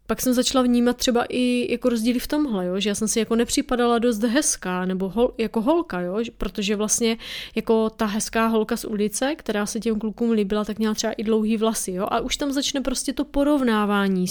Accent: native